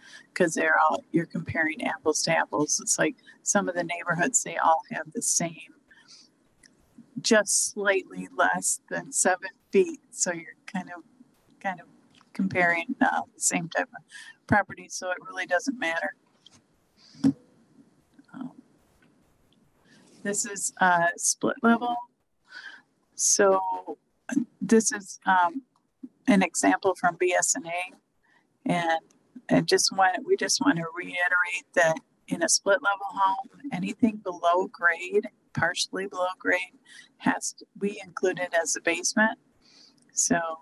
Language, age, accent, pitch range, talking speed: English, 50-69, American, 180-260 Hz, 125 wpm